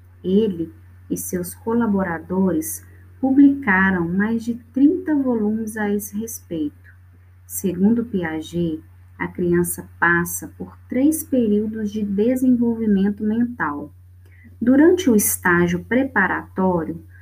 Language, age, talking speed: Portuguese, 20-39, 95 wpm